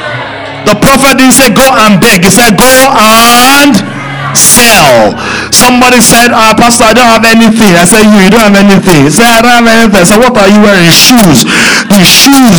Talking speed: 190 wpm